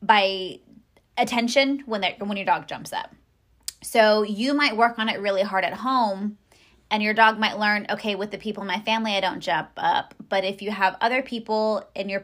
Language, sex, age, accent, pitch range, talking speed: English, female, 20-39, American, 185-220 Hz, 210 wpm